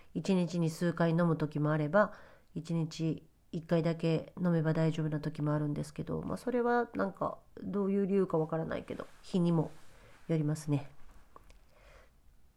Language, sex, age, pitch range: Japanese, female, 40-59, 155-210 Hz